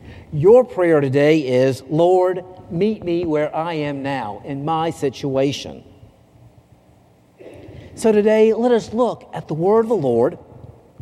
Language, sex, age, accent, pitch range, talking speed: English, male, 50-69, American, 120-175 Hz, 135 wpm